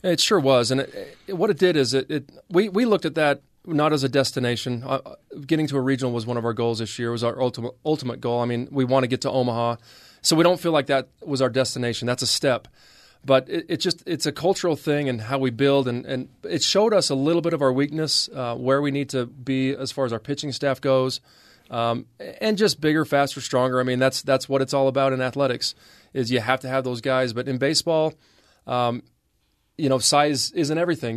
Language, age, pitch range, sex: English, 30-49, 120-140 Hz, male